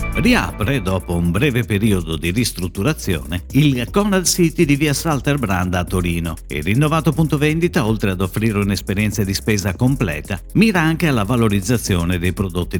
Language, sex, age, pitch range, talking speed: Italian, male, 50-69, 95-135 Hz, 155 wpm